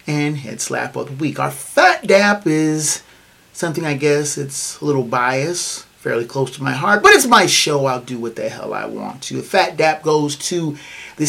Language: English